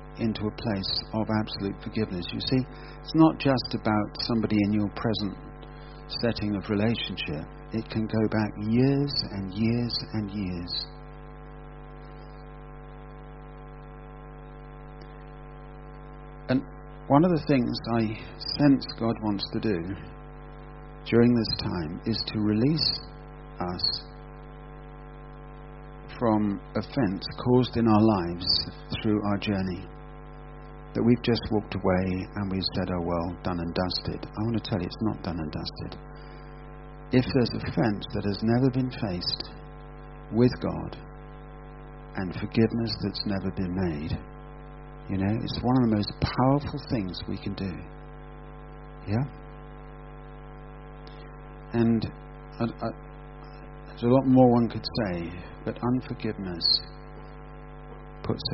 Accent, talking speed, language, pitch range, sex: British, 125 wpm, English, 100-125 Hz, male